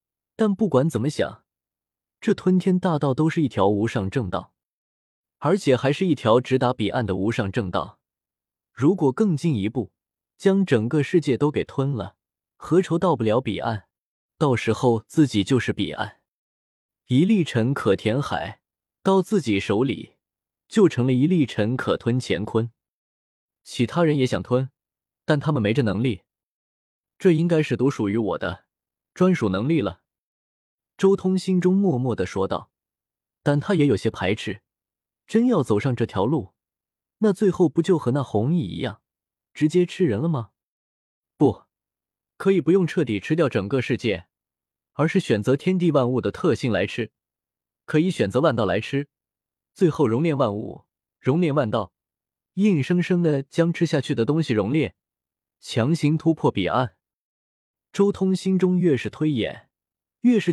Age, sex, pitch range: 20-39, male, 110-170 Hz